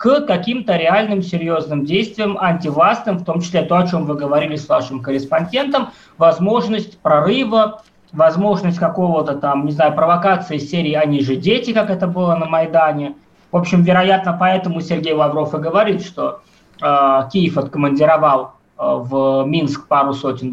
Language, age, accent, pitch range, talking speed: Russian, 20-39, native, 150-195 Hz, 150 wpm